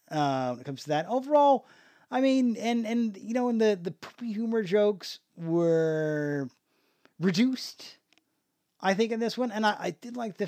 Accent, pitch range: American, 160-235 Hz